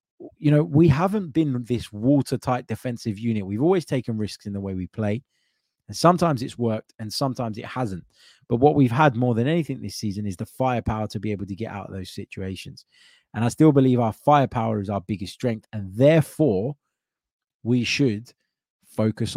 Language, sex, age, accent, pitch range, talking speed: English, male, 20-39, British, 105-140 Hz, 190 wpm